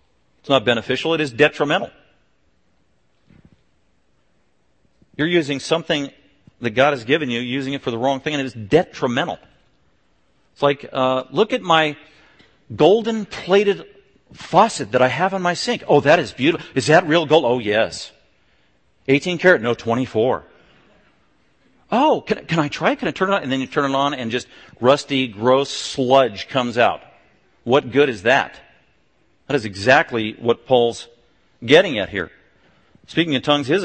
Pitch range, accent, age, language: 115-155 Hz, American, 50-69, English